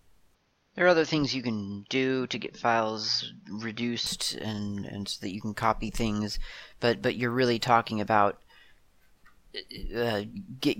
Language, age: English, 40-59